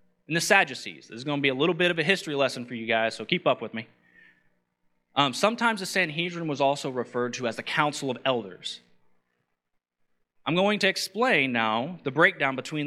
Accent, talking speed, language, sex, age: American, 205 wpm, English, male, 30-49